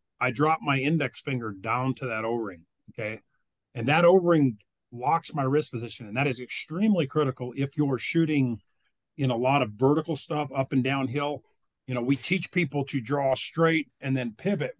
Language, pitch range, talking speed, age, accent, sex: English, 125-155 Hz, 185 wpm, 40-59, American, male